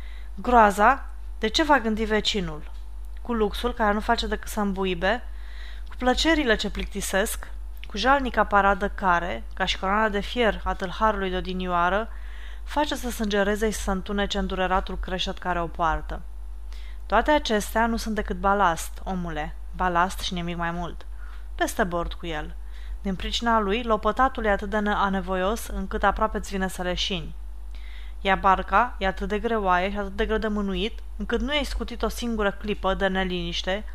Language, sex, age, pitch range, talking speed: Romanian, female, 20-39, 185-220 Hz, 165 wpm